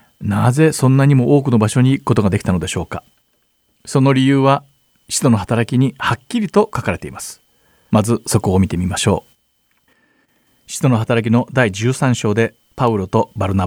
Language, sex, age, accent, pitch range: Japanese, male, 50-69, native, 105-145 Hz